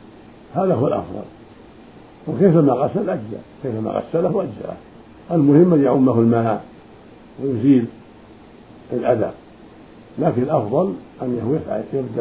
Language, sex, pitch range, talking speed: Arabic, male, 115-150 Hz, 105 wpm